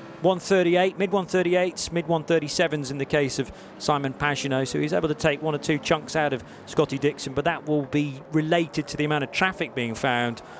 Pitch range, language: 135-175 Hz, English